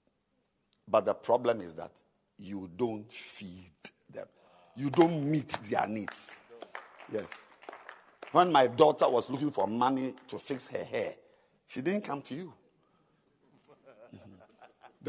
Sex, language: male, English